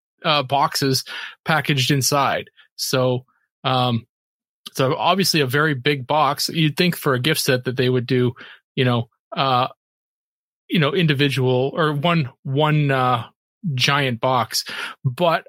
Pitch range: 125-155 Hz